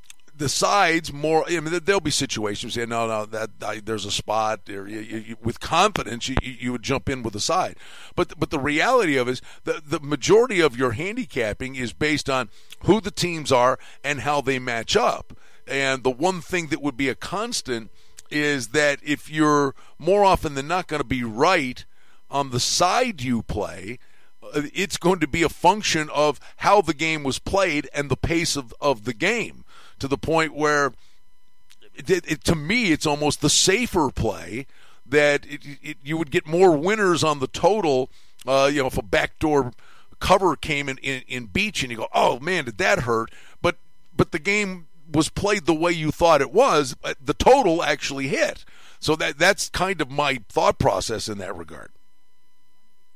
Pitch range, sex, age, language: 130-170 Hz, male, 50-69, English